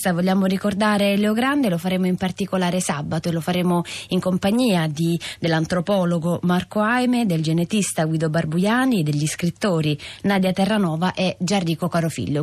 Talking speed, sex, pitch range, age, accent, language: 140 wpm, female, 160-195 Hz, 20-39, native, Italian